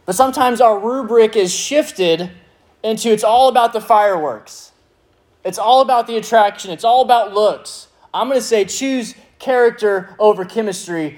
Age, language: 20-39, English